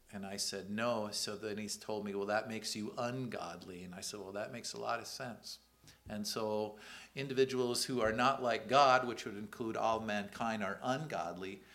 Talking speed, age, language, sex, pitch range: 200 wpm, 50-69, English, male, 100-115 Hz